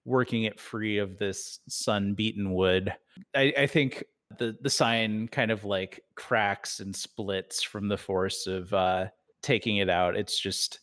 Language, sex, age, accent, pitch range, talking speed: English, male, 30-49, American, 95-115 Hz, 165 wpm